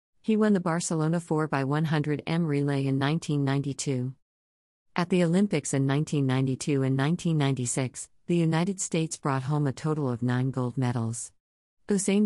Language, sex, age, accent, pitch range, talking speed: English, female, 50-69, American, 130-160 Hz, 130 wpm